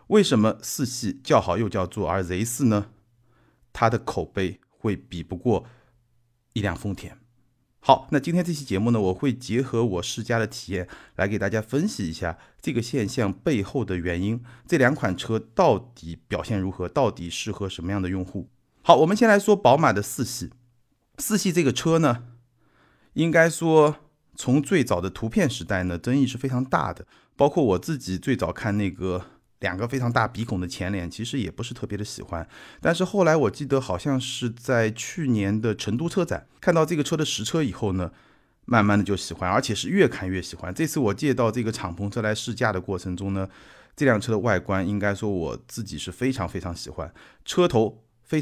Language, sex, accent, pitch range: Chinese, male, native, 100-135 Hz